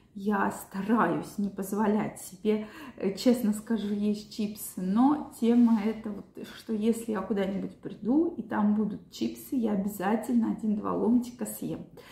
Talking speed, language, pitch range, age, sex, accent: 130 wpm, Russian, 210-250 Hz, 20-39, female, native